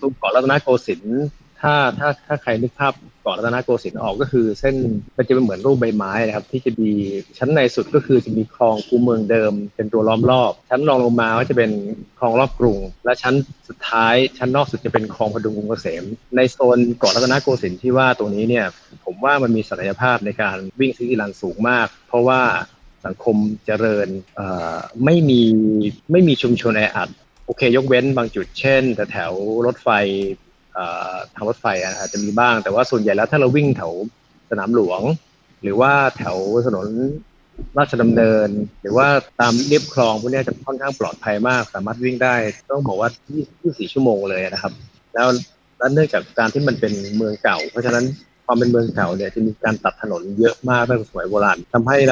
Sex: male